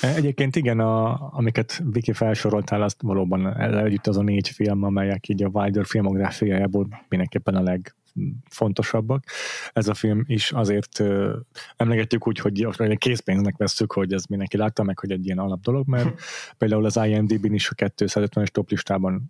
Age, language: 20-39, Hungarian